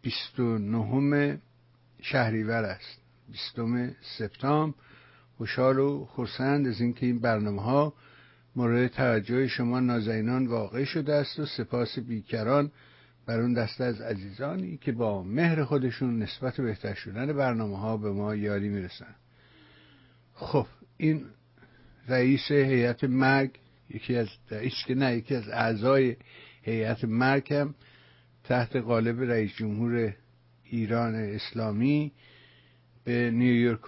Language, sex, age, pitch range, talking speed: English, male, 60-79, 110-130 Hz, 110 wpm